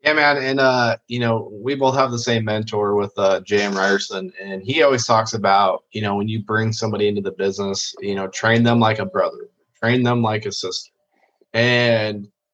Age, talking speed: 20-39, 205 wpm